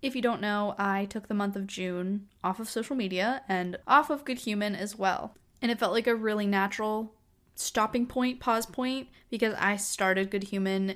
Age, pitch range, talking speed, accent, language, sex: 10-29, 195-230 Hz, 205 wpm, American, English, female